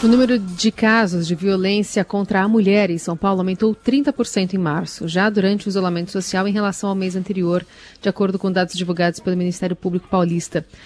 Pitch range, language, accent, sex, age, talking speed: 180-220 Hz, Portuguese, Brazilian, female, 30-49, 195 wpm